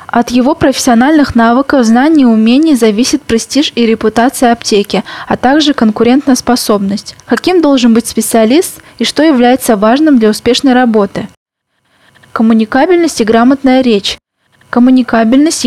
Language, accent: Russian, native